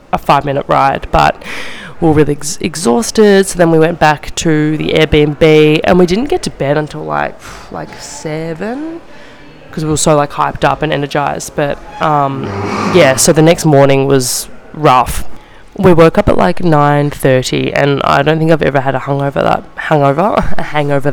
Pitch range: 140-170 Hz